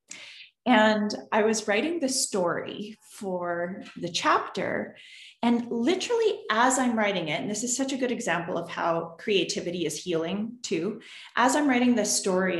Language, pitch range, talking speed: English, 190-300 Hz, 155 wpm